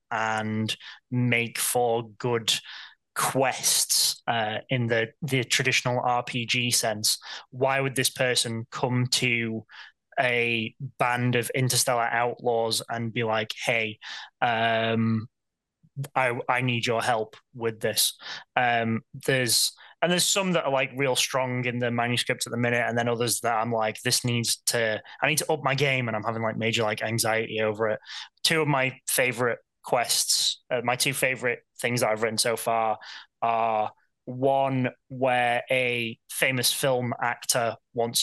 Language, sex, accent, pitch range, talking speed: English, male, British, 115-125 Hz, 155 wpm